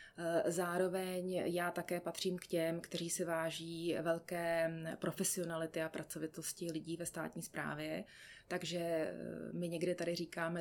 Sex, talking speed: female, 125 wpm